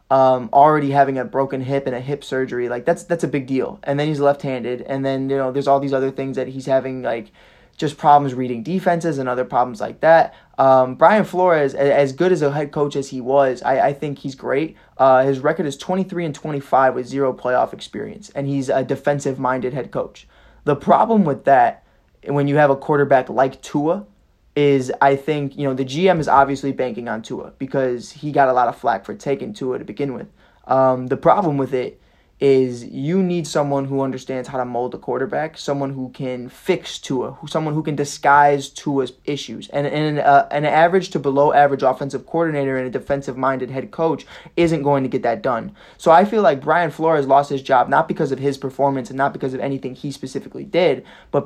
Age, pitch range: 20-39, 130-150 Hz